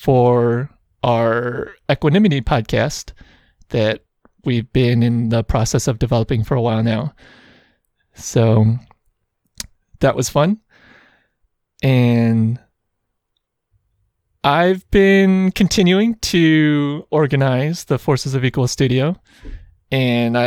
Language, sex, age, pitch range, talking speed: English, male, 20-39, 115-150 Hz, 95 wpm